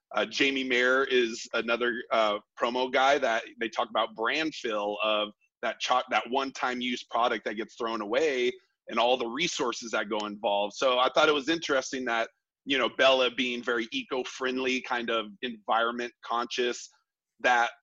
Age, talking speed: 30-49, 165 wpm